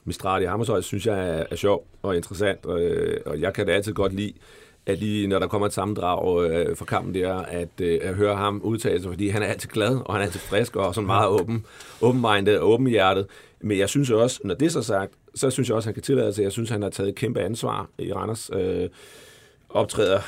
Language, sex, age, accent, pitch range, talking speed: Danish, male, 40-59, native, 95-115 Hz, 235 wpm